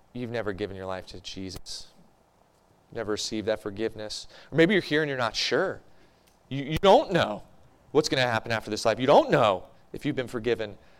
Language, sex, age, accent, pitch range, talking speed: English, male, 30-49, American, 100-125 Hz, 200 wpm